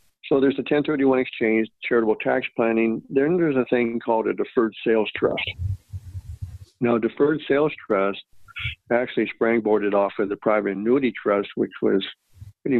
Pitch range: 100-120 Hz